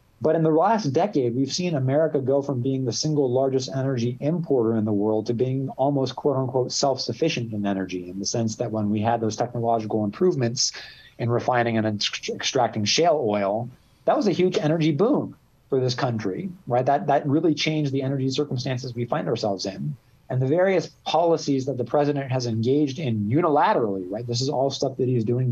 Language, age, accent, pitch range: English, 30-49, American, 120-145 Hz